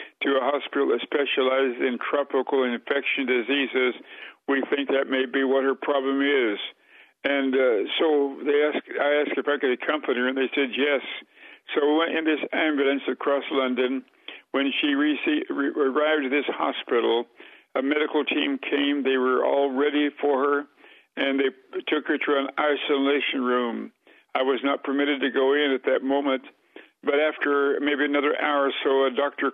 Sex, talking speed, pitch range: male, 165 wpm, 130-145 Hz